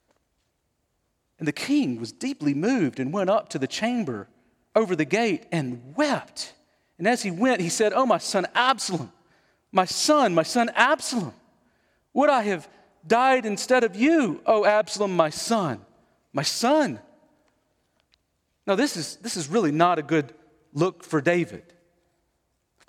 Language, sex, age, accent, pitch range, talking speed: English, male, 40-59, American, 180-280 Hz, 155 wpm